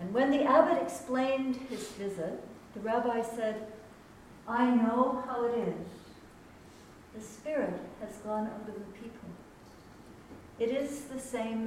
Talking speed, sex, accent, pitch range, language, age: 135 wpm, female, American, 200-260 Hz, English, 60-79